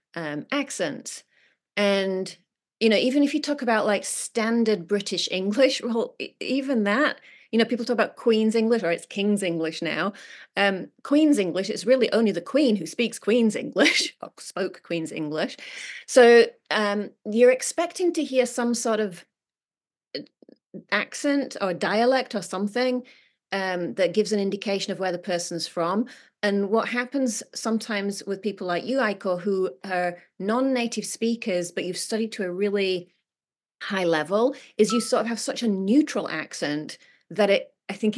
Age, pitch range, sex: 30-49, 180-235 Hz, female